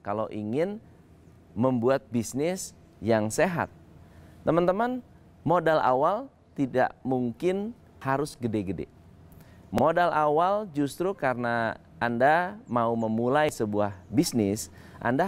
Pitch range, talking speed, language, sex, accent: 115-150 Hz, 90 wpm, Indonesian, male, native